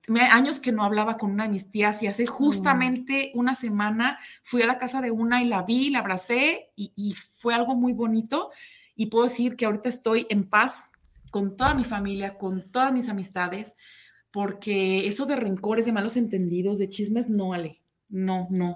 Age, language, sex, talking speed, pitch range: 30-49, Spanish, female, 190 wpm, 190-245 Hz